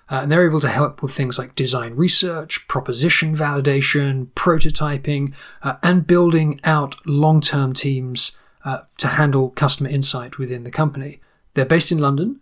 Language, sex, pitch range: English, male, 130-155 Hz